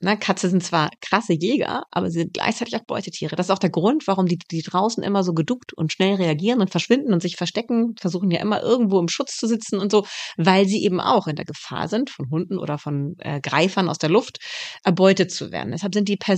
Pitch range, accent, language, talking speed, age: 165-200 Hz, German, German, 240 wpm, 30-49